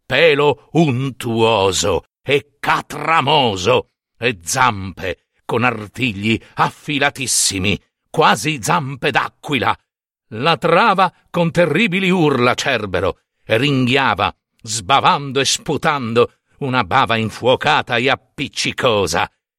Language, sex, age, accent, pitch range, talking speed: Italian, male, 60-79, native, 120-160 Hz, 85 wpm